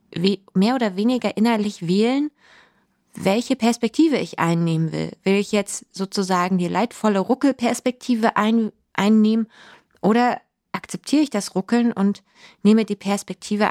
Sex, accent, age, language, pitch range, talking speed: female, German, 20-39, German, 170-210 Hz, 120 wpm